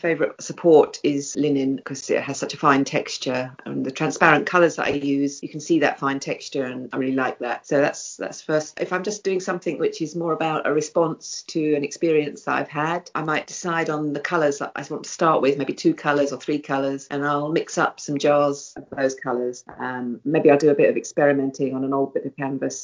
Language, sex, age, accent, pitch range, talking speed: English, female, 40-59, British, 130-150 Hz, 235 wpm